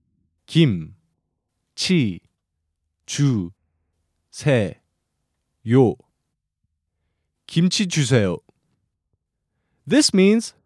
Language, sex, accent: English, male, American